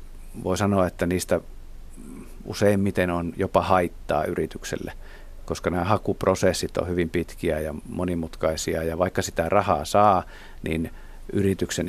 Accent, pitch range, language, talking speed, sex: native, 85-100 Hz, Finnish, 120 wpm, male